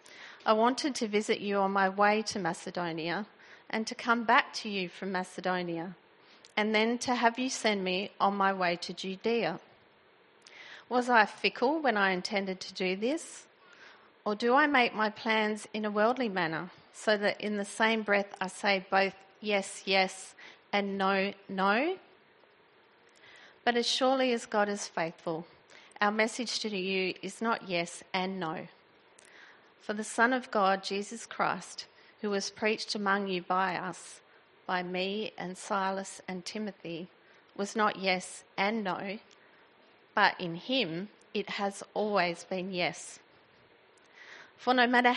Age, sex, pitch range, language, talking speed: 40-59, female, 190-230 Hz, English, 155 wpm